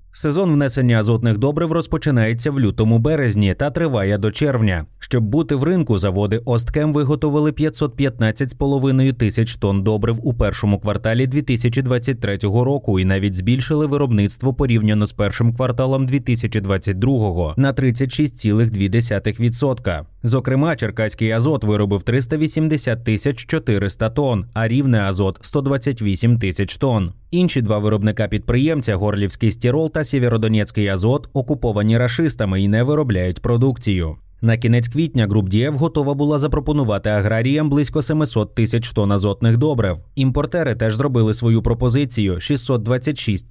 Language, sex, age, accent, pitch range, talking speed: Ukrainian, male, 20-39, native, 105-140 Hz, 125 wpm